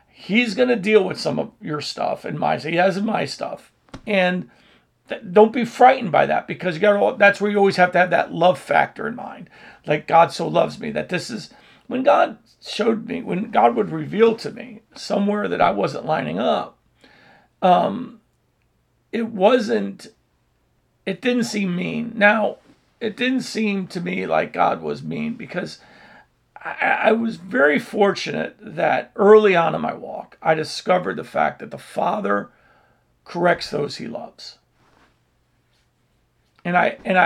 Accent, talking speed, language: American, 170 wpm, English